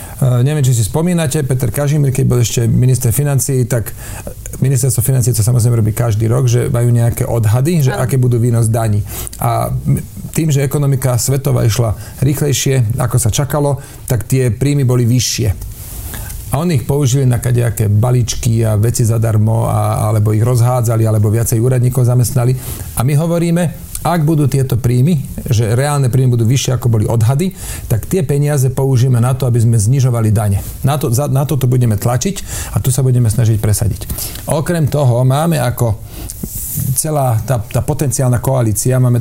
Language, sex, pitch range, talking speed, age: Slovak, male, 115-135 Hz, 165 wpm, 40-59